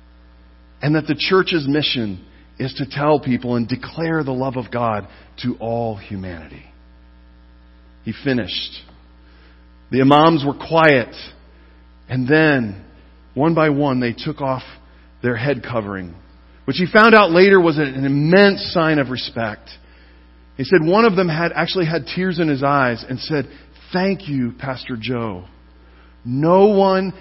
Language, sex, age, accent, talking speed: English, male, 40-59, American, 145 wpm